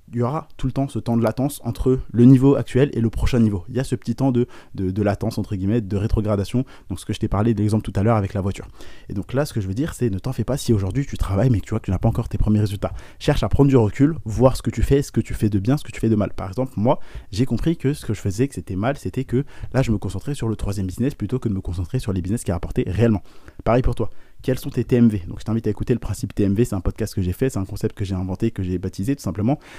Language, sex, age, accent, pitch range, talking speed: French, male, 20-39, French, 100-125 Hz, 330 wpm